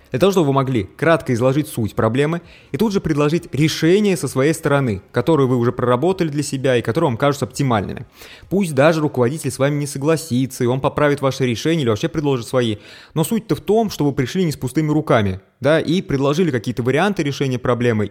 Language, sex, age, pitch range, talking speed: Russian, male, 20-39, 120-160 Hz, 205 wpm